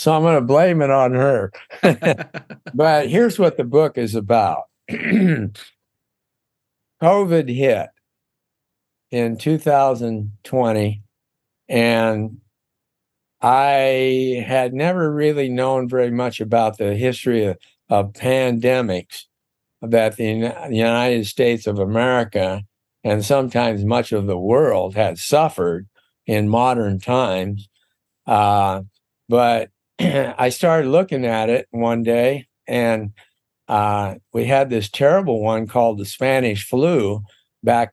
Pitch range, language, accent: 110-135 Hz, English, American